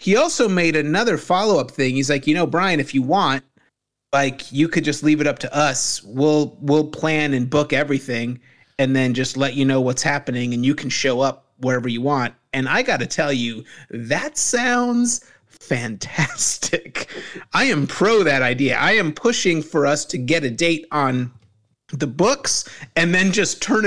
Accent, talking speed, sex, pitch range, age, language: American, 190 wpm, male, 135-175 Hz, 30-49, English